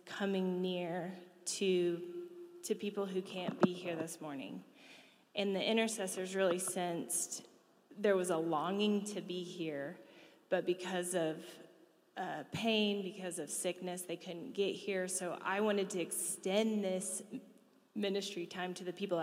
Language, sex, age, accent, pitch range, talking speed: English, female, 20-39, American, 175-205 Hz, 145 wpm